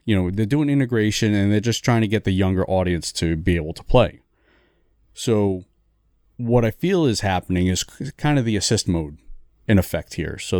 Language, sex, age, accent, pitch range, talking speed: English, male, 30-49, American, 85-110 Hz, 200 wpm